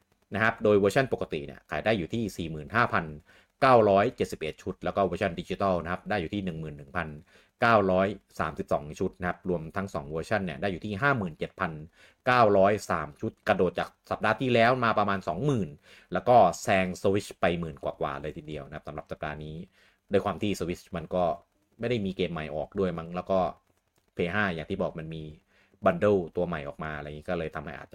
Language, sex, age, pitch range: Thai, male, 30-49, 80-100 Hz